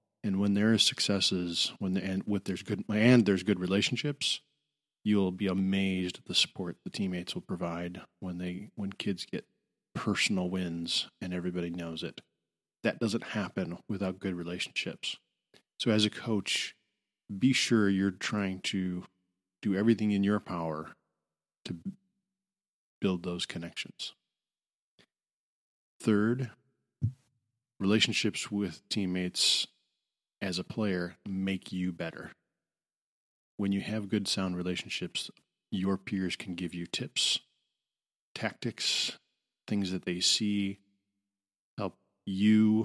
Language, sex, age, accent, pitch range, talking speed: English, male, 40-59, American, 95-110 Hz, 125 wpm